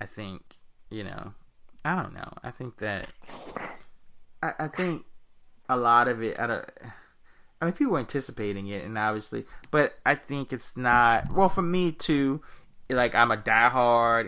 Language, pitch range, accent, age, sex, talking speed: English, 105-125 Hz, American, 20-39, male, 165 wpm